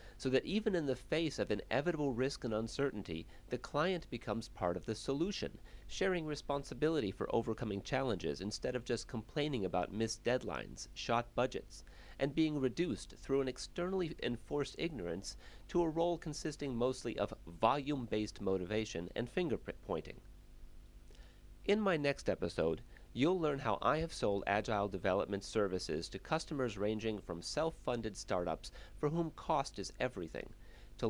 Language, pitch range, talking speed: English, 95-135 Hz, 145 wpm